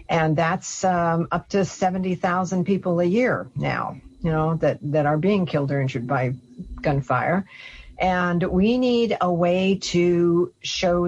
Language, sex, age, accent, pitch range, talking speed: English, female, 50-69, American, 150-200 Hz, 150 wpm